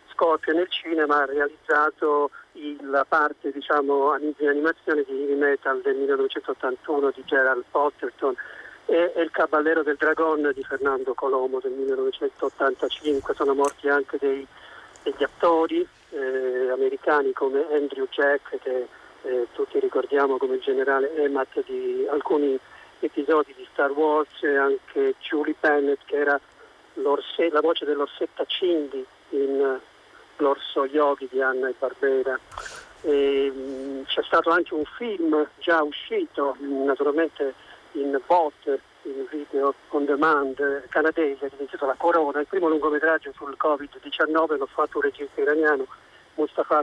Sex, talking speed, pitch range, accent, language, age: male, 130 wpm, 140-185 Hz, native, Italian, 50-69